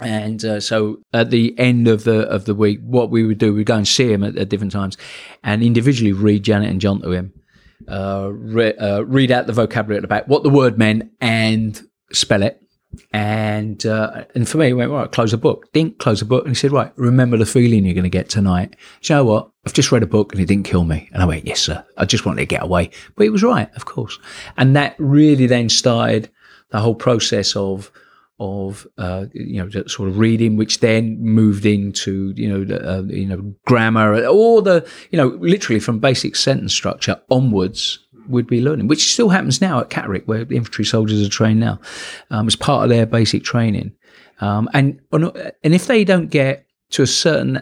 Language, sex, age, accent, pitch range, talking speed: English, male, 40-59, British, 105-140 Hz, 225 wpm